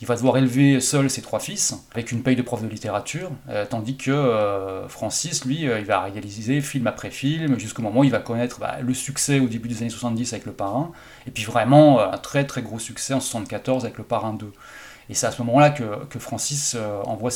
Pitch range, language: 115-135 Hz, French